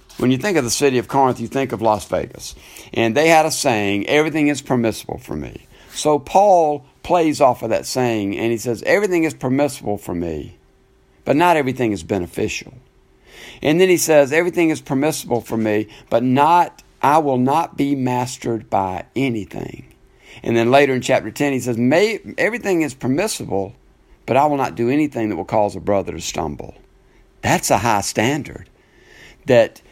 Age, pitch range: 60-79, 105-145 Hz